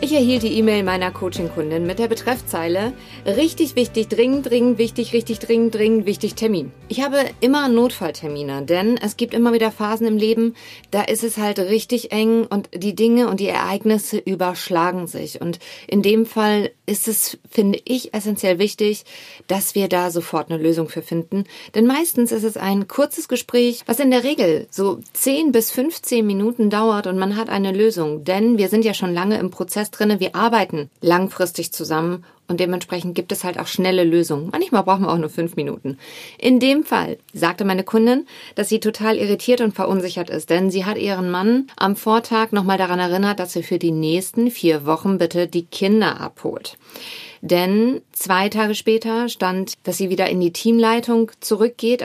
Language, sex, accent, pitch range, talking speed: German, female, German, 180-230 Hz, 185 wpm